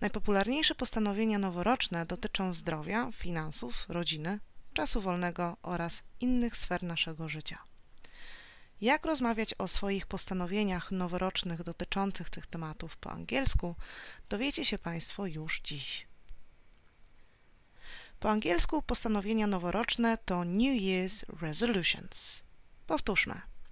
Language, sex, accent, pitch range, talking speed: Polish, female, native, 165-210 Hz, 100 wpm